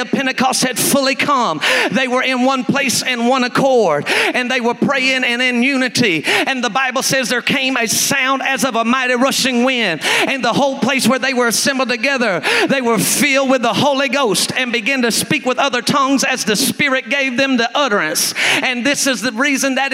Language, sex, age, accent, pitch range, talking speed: English, male, 40-59, American, 255-285 Hz, 210 wpm